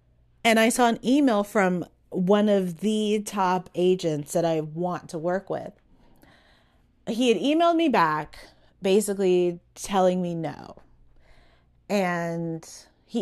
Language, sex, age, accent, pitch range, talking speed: English, female, 30-49, American, 175-255 Hz, 125 wpm